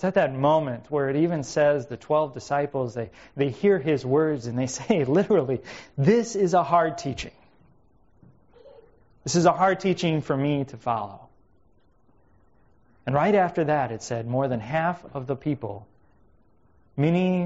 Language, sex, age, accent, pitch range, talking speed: English, male, 30-49, American, 110-140 Hz, 160 wpm